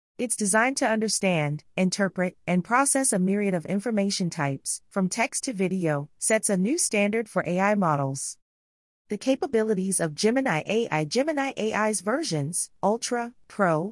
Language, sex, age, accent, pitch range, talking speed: English, female, 30-49, American, 170-230 Hz, 140 wpm